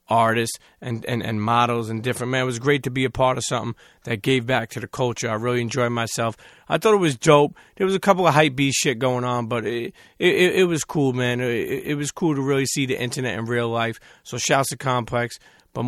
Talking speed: 250 wpm